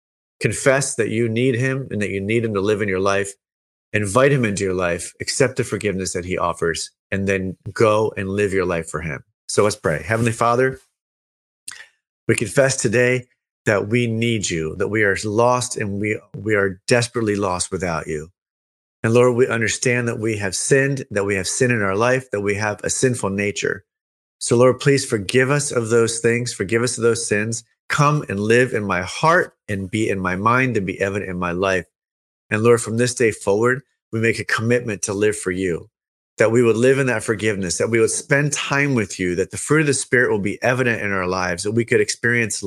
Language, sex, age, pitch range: English, male, 30-49, 100-125 Hz